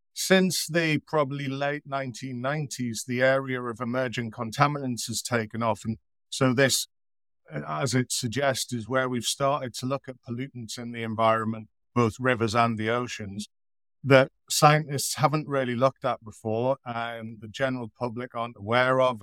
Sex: male